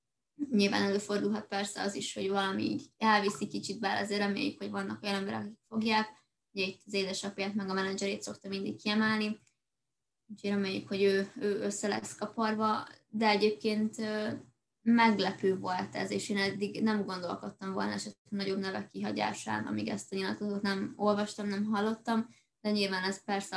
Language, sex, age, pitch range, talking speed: Hungarian, female, 20-39, 195-215 Hz, 160 wpm